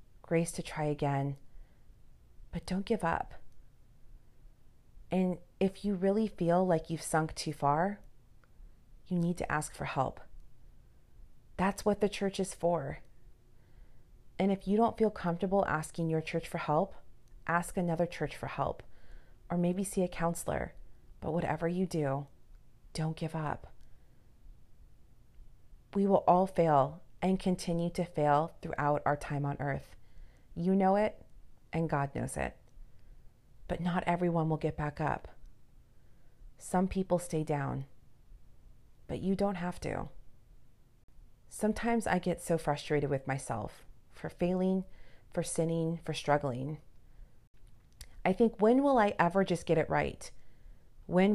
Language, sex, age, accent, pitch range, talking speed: English, female, 30-49, American, 145-185 Hz, 140 wpm